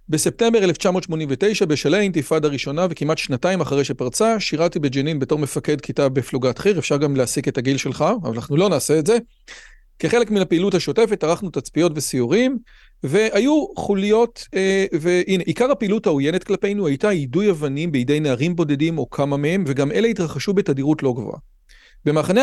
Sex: male